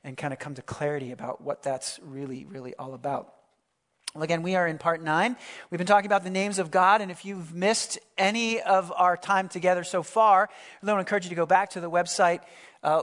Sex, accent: male, American